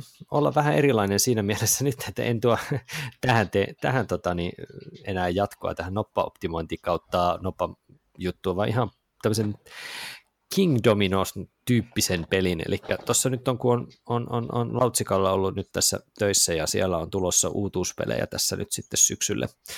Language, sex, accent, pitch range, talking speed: Finnish, male, native, 95-125 Hz, 150 wpm